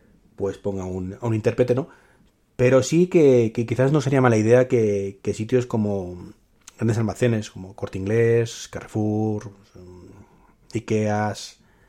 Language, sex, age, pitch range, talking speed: Spanish, male, 30-49, 100-125 Hz, 135 wpm